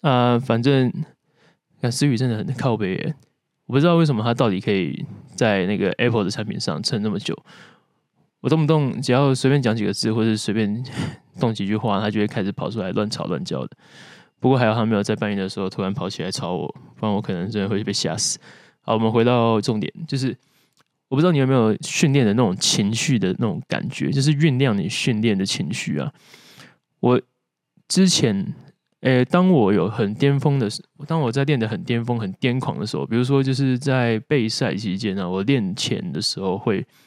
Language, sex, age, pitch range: Chinese, male, 20-39, 110-140 Hz